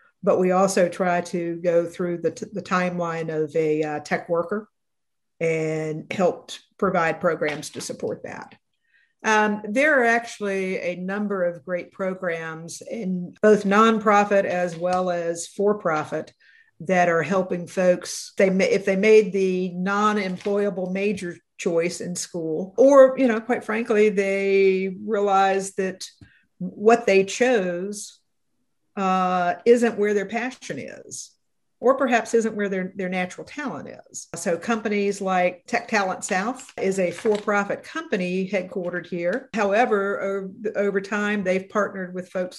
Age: 50-69